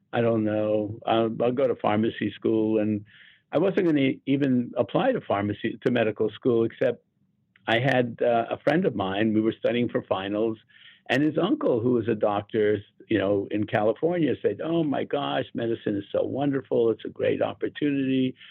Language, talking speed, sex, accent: English, 185 wpm, male, American